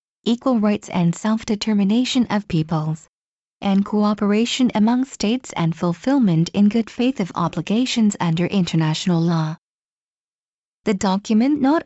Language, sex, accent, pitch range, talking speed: English, female, American, 180-235 Hz, 115 wpm